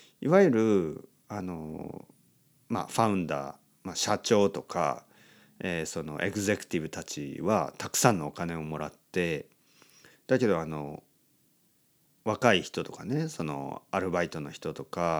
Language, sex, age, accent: Japanese, male, 40-59, native